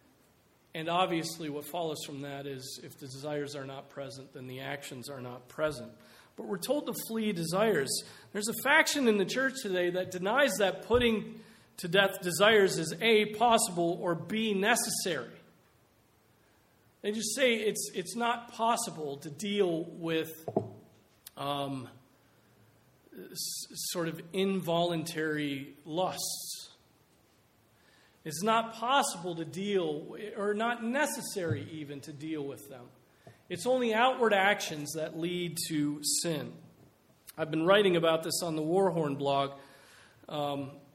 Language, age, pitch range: English, 40-59, 145-205 Hz